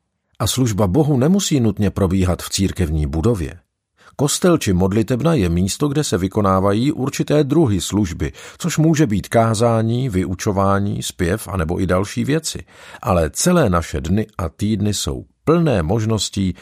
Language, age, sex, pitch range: Czech, 50-69, male, 80-105 Hz